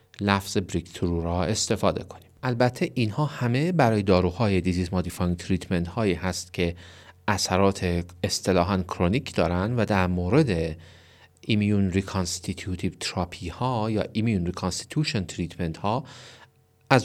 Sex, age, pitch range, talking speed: male, 40-59, 85-115 Hz, 115 wpm